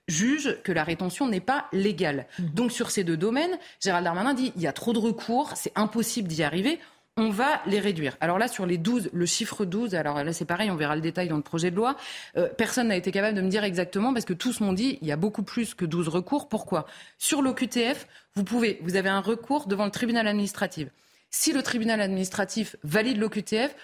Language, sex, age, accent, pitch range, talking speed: French, female, 20-39, French, 180-240 Hz, 230 wpm